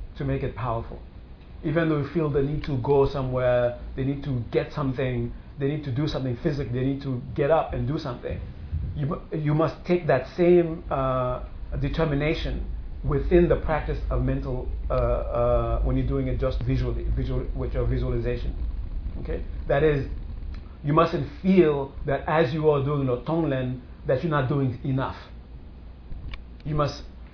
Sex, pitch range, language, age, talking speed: male, 120-145 Hz, English, 50-69, 170 wpm